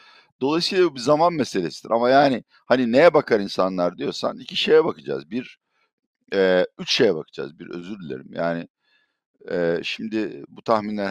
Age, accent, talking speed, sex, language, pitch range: 50-69, native, 145 wpm, male, Turkish, 85-110 Hz